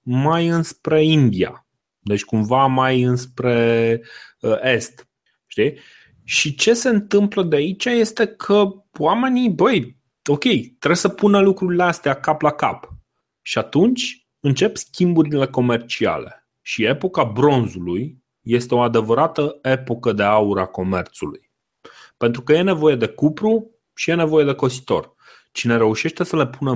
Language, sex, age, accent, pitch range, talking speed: Romanian, male, 30-49, native, 115-155 Hz, 130 wpm